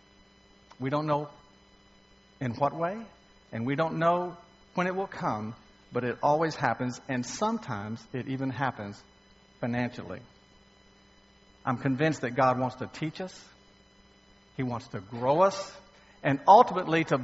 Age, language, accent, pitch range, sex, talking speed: 50-69, English, American, 100-150 Hz, male, 140 wpm